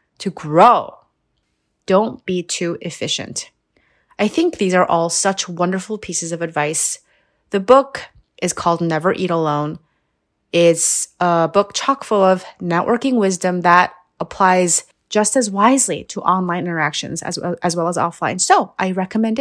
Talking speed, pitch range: 145 wpm, 165-200 Hz